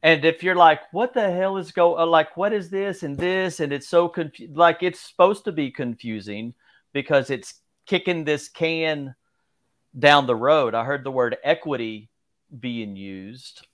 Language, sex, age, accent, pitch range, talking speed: English, male, 40-59, American, 115-155 Hz, 170 wpm